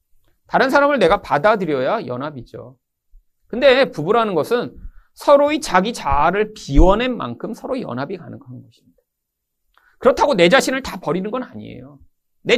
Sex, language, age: male, Korean, 40-59